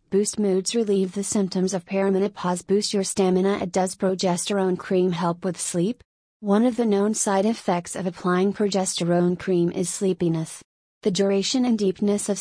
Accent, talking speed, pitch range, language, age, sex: American, 160 wpm, 180-205 Hz, English, 30-49, female